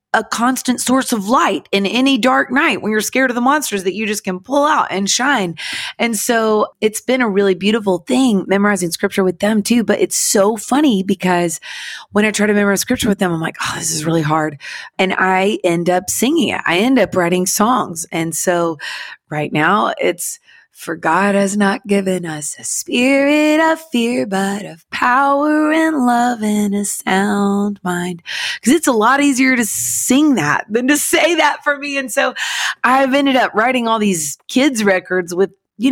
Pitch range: 180-250 Hz